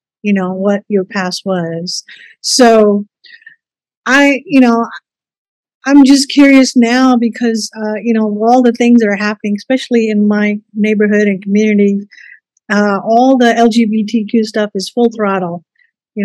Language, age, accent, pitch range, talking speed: English, 50-69, American, 200-235 Hz, 145 wpm